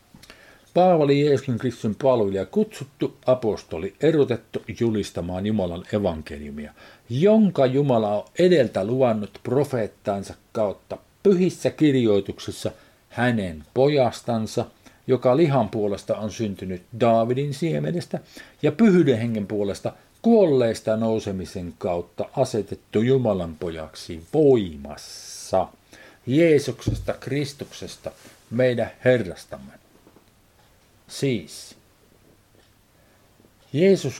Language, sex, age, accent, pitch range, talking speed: Finnish, male, 50-69, native, 100-135 Hz, 80 wpm